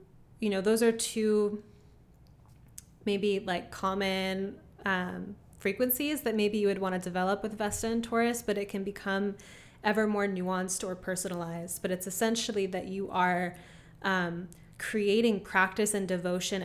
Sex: female